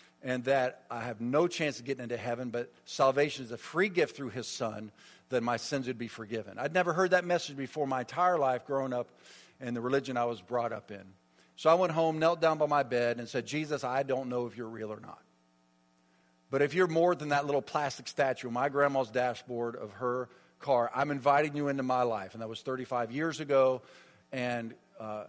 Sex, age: male, 50-69